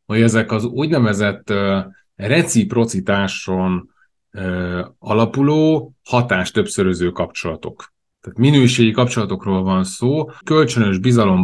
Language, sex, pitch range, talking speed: Hungarian, male, 95-125 Hz, 95 wpm